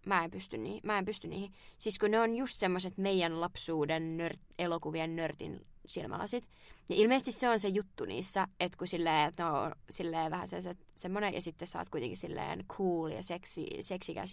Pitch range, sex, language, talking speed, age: 165-200 Hz, female, Finnish, 185 wpm, 20-39